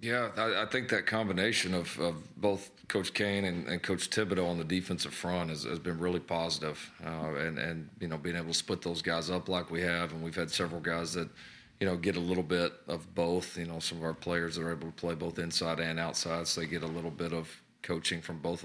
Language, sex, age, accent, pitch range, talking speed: English, male, 40-59, American, 85-90 Hz, 250 wpm